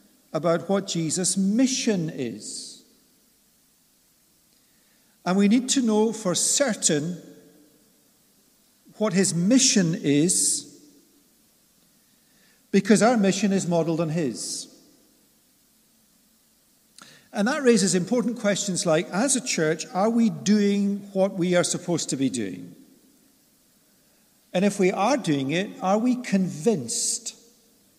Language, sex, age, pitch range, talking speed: English, male, 50-69, 170-250 Hz, 110 wpm